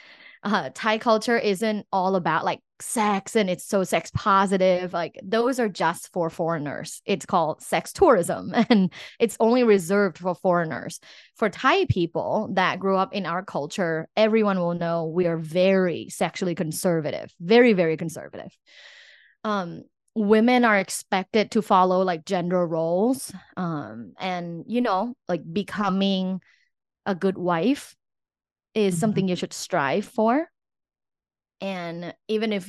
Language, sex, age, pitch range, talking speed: English, female, 20-39, 170-205 Hz, 140 wpm